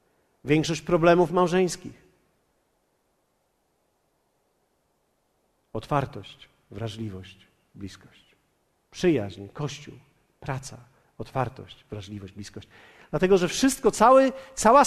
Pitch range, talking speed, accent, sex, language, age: 150-240 Hz, 65 wpm, native, male, Polish, 50-69